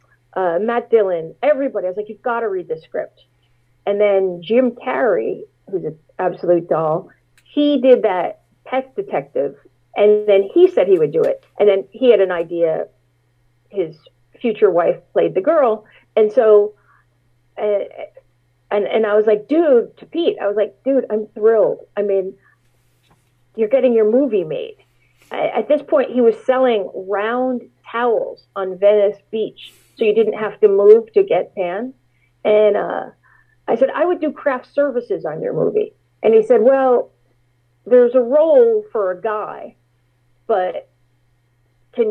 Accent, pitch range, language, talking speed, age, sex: American, 170-270 Hz, English, 165 wpm, 40-59, female